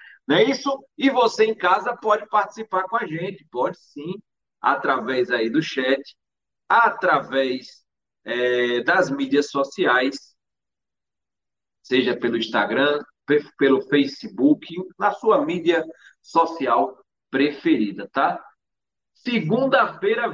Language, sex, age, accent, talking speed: Portuguese, male, 40-59, Brazilian, 100 wpm